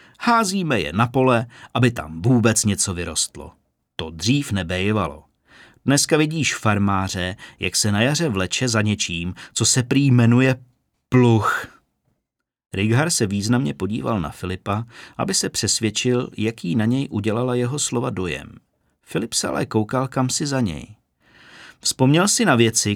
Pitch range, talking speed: 95-130 Hz, 145 wpm